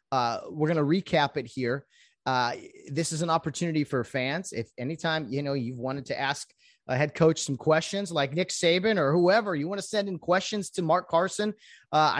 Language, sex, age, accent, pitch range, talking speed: English, male, 30-49, American, 120-165 Hz, 205 wpm